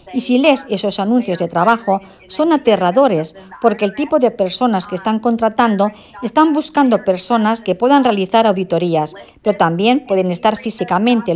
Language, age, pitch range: Spanish, 50-69, 185-235 Hz